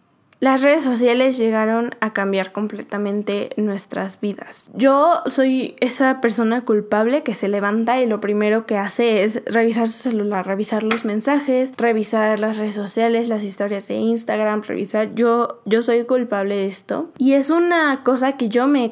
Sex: female